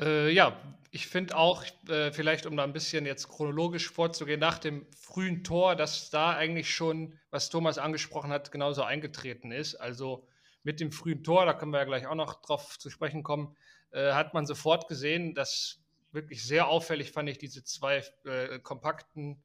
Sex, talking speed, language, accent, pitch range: male, 175 wpm, German, German, 135-155 Hz